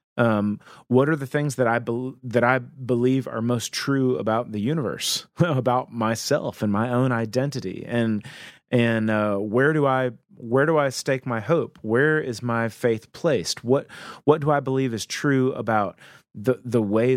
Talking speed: 175 wpm